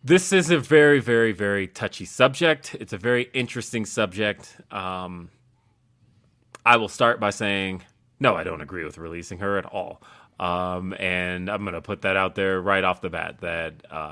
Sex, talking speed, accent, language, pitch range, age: male, 175 wpm, American, English, 90-115 Hz, 30-49